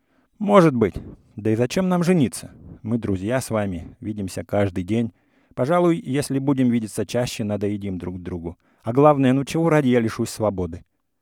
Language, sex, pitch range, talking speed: English, male, 105-140 Hz, 160 wpm